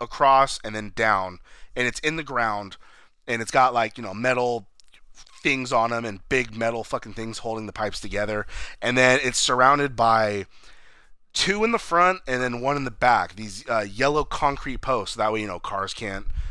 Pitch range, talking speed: 110-145 Hz, 195 wpm